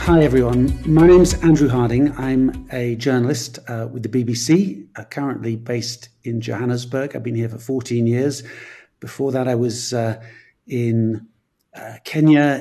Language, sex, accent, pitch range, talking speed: English, male, British, 125-155 Hz, 150 wpm